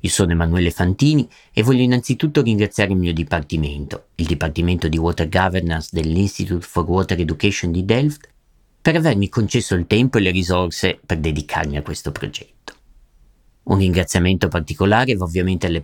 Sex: male